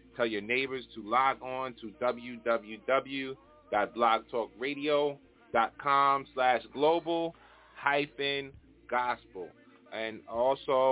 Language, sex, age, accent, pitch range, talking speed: English, male, 30-49, American, 115-140 Hz, 75 wpm